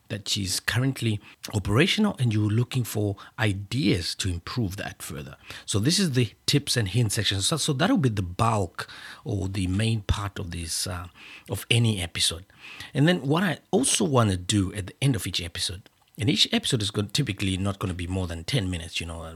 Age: 50-69